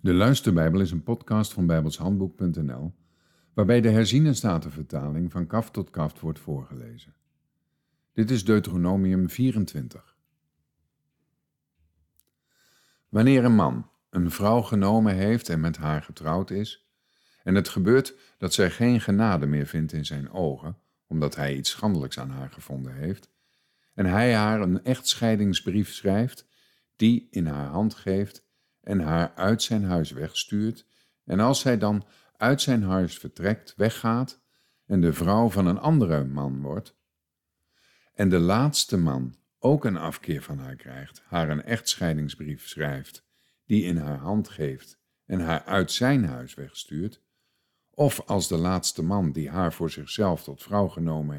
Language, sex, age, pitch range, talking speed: Dutch, male, 50-69, 80-110 Hz, 145 wpm